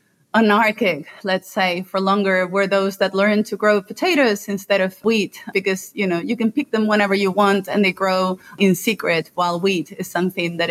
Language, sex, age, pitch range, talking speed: English, female, 30-49, 185-215 Hz, 195 wpm